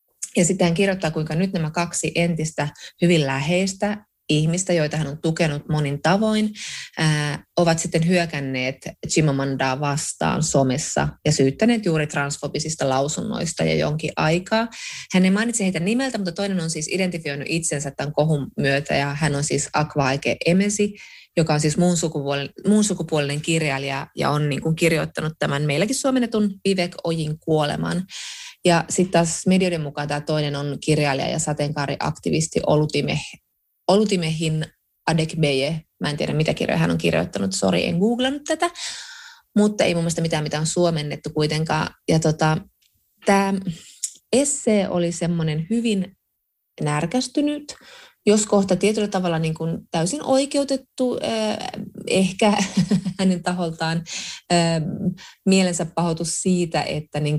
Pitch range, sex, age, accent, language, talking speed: 150-190 Hz, female, 20-39, native, Finnish, 135 wpm